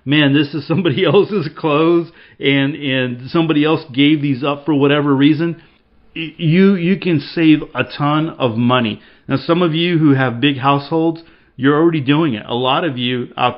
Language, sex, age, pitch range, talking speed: English, male, 40-59, 130-165 Hz, 180 wpm